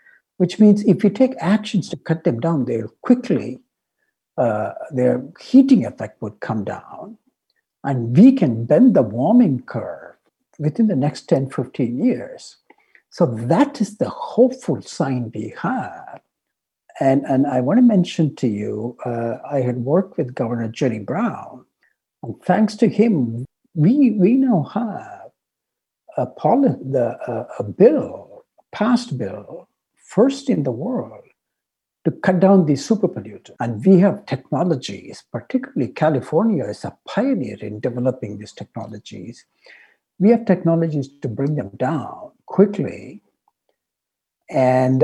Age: 60-79